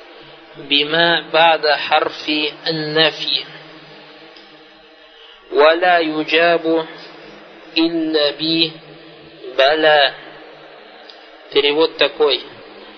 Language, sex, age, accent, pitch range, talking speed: Russian, male, 50-69, native, 160-225 Hz, 45 wpm